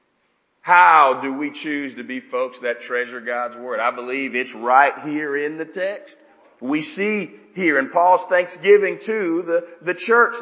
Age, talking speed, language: 40-59, 165 wpm, English